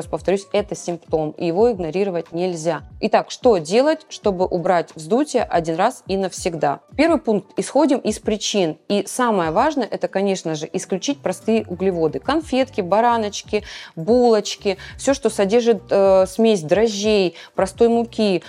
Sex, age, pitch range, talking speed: female, 20-39, 180-225 Hz, 135 wpm